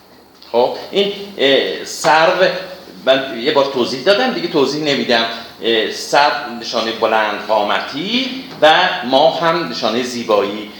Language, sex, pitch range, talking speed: Persian, male, 135-220 Hz, 105 wpm